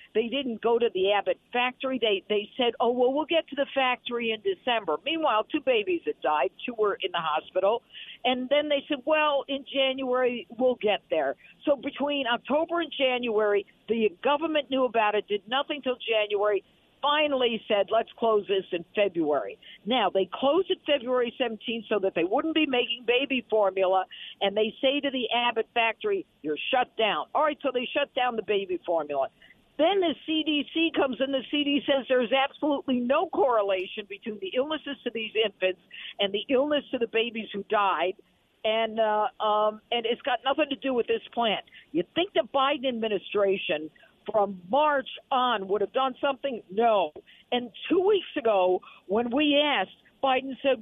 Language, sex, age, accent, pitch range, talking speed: English, female, 50-69, American, 215-285 Hz, 180 wpm